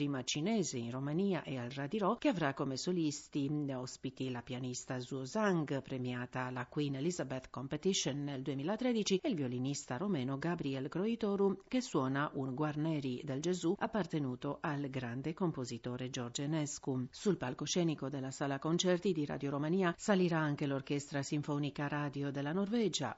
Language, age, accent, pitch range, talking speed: Italian, 50-69, native, 135-175 Hz, 140 wpm